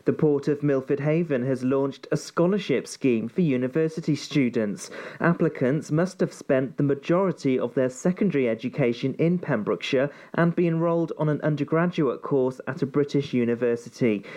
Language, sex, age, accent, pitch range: Japanese, male, 40-59, British, 130-165 Hz